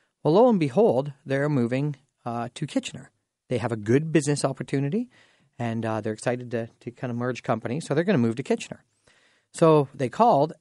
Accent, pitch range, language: American, 130-190 Hz, English